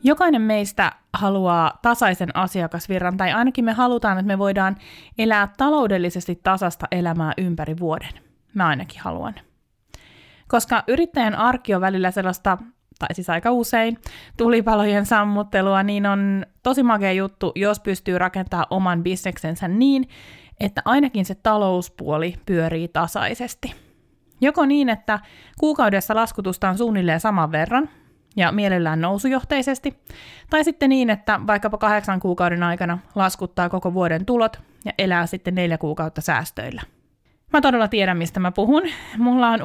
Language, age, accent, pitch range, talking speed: Finnish, 20-39, native, 180-230 Hz, 135 wpm